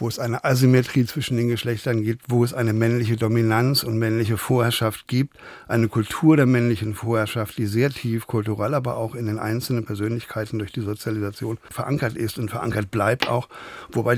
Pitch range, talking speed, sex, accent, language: 110-140 Hz, 180 wpm, male, German, German